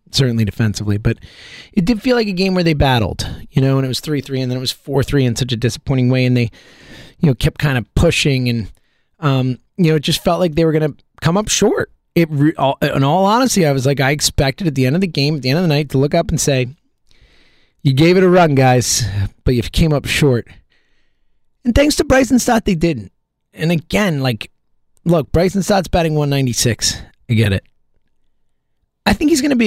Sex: male